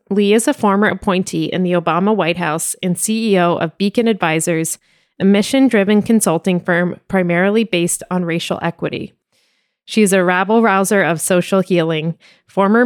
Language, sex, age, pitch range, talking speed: English, female, 20-39, 175-205 Hz, 150 wpm